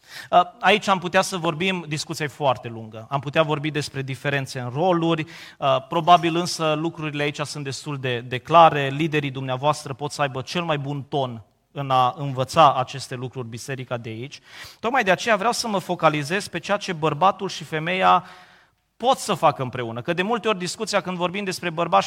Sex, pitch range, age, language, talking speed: male, 140-195 Hz, 30-49, Romanian, 185 wpm